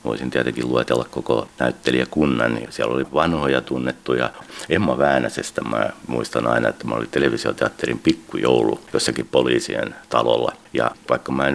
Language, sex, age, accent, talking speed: Finnish, male, 60-79, native, 130 wpm